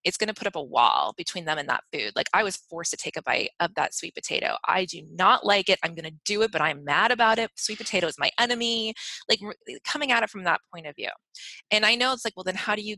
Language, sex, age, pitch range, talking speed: English, female, 20-39, 185-260 Hz, 290 wpm